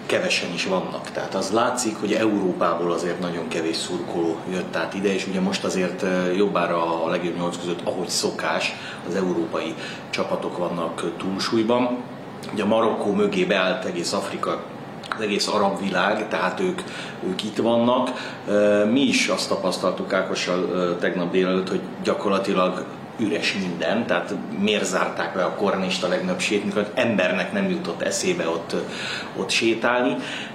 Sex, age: male, 30-49